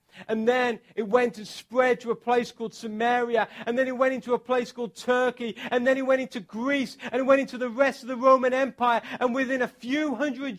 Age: 40-59